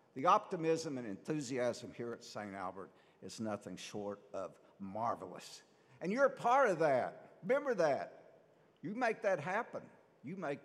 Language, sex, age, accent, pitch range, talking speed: English, male, 60-79, American, 125-190 Hz, 150 wpm